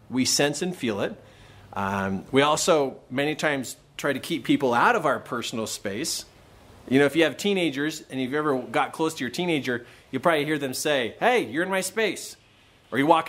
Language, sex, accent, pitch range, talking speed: English, male, American, 125-170 Hz, 210 wpm